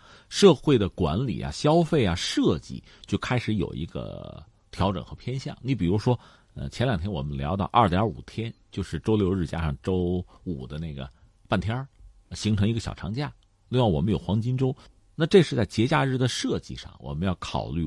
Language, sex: Chinese, male